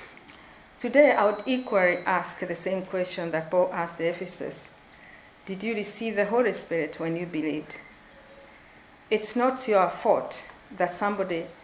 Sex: female